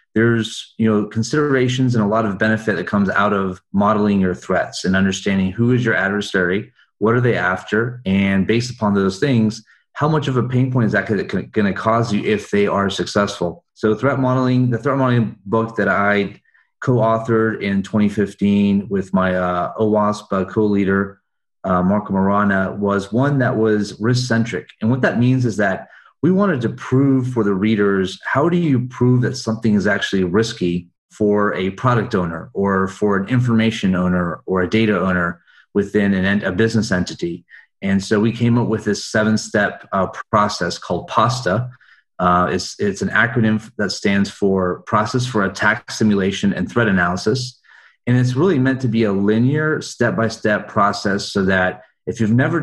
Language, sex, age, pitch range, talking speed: English, male, 30-49, 100-120 Hz, 175 wpm